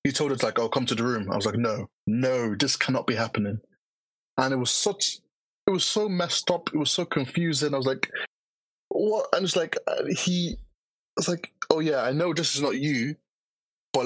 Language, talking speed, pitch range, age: English, 215 wpm, 115-155 Hz, 20-39